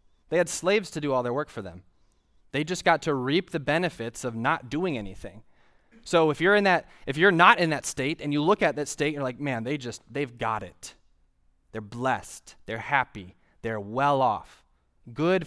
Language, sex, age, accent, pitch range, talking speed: English, male, 20-39, American, 105-145 Hz, 210 wpm